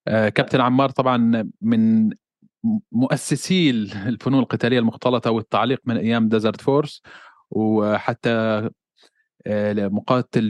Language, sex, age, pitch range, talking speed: Arabic, male, 20-39, 110-135 Hz, 85 wpm